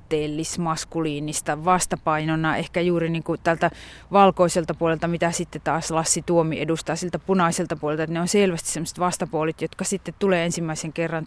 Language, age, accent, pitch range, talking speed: Finnish, 30-49, native, 160-180 Hz, 155 wpm